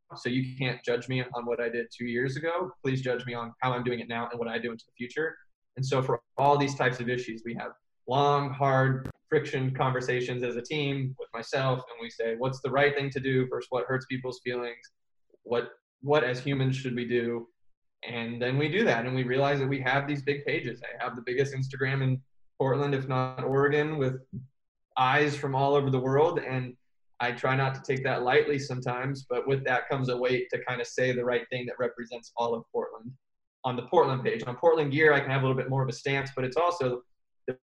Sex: male